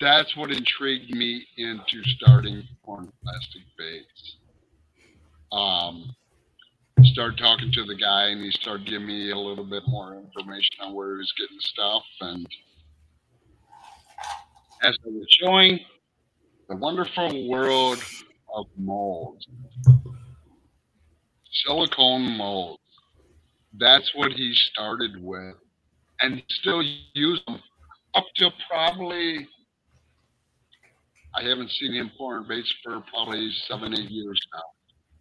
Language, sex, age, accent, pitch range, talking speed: English, male, 50-69, American, 100-130 Hz, 115 wpm